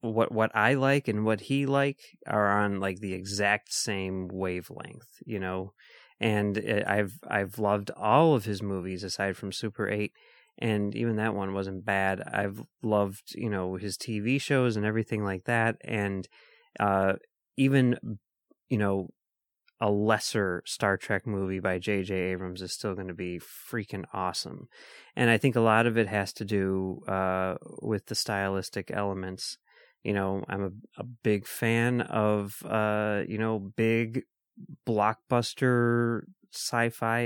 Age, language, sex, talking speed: 30-49, English, male, 155 wpm